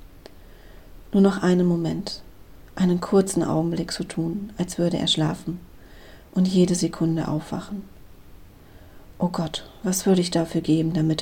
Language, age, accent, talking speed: German, 40-59, German, 135 wpm